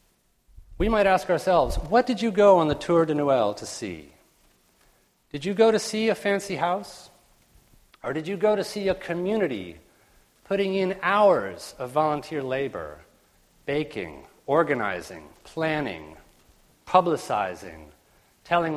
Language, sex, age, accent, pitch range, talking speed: English, male, 40-59, American, 120-180 Hz, 135 wpm